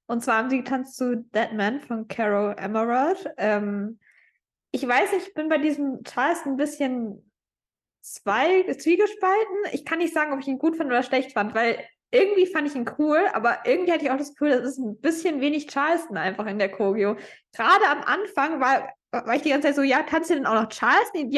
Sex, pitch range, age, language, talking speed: female, 230-305 Hz, 20-39, German, 210 wpm